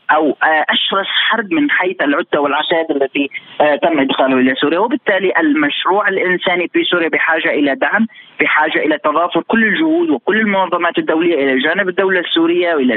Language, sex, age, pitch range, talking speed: Arabic, male, 30-49, 165-235 Hz, 155 wpm